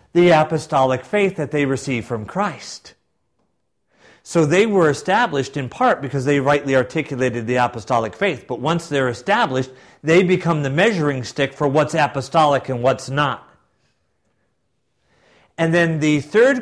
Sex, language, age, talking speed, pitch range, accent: male, English, 50-69, 145 wpm, 115-155 Hz, American